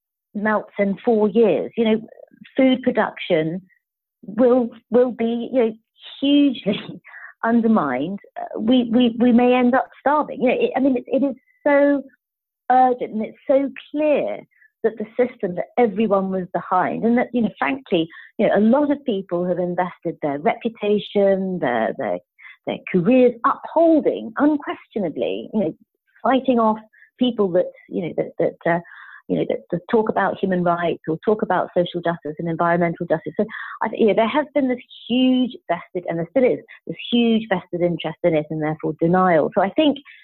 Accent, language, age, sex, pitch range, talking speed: British, English, 50-69, female, 180-255 Hz, 175 wpm